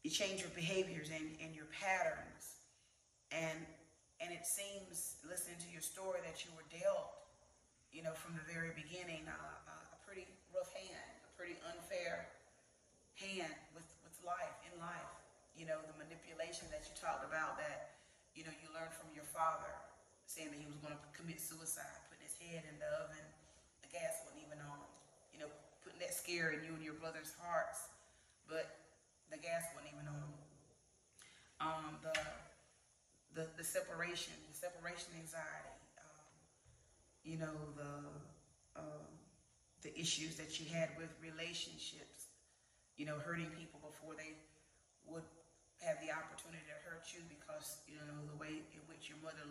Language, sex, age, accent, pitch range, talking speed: English, female, 30-49, American, 155-175 Hz, 165 wpm